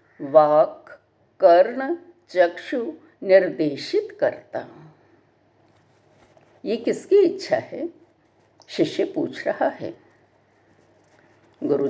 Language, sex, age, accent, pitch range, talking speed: Hindi, female, 60-79, native, 205-320 Hz, 70 wpm